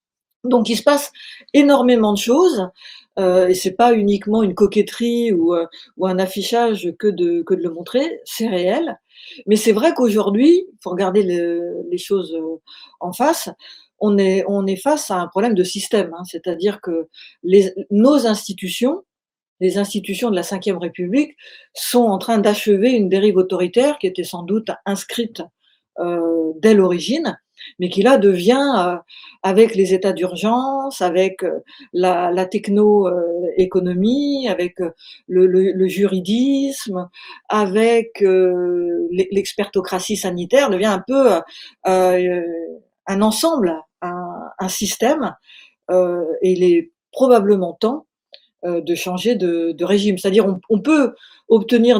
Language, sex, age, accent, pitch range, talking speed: French, female, 50-69, French, 180-235 Hz, 145 wpm